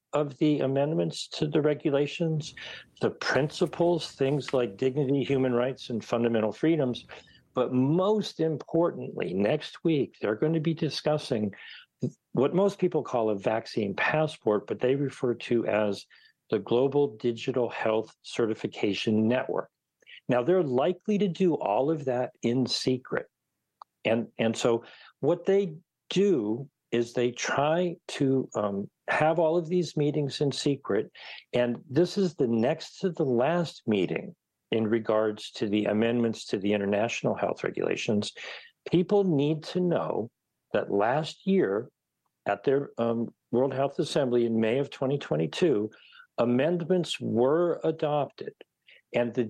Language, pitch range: English, 120-160 Hz